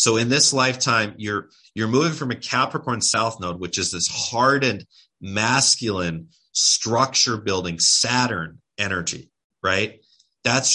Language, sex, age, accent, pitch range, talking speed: English, male, 30-49, American, 90-120 Hz, 130 wpm